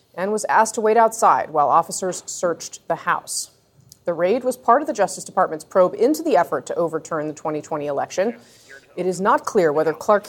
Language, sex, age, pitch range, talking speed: English, female, 30-49, 180-270 Hz, 200 wpm